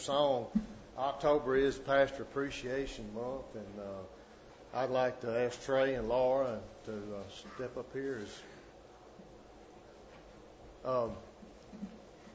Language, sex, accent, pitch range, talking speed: English, male, American, 110-140 Hz, 105 wpm